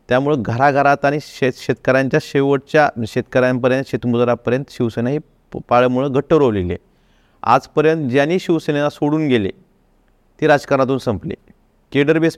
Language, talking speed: Marathi, 130 wpm